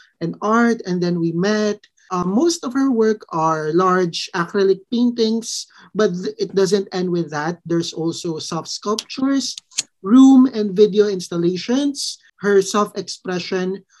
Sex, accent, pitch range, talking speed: male, native, 170-215 Hz, 135 wpm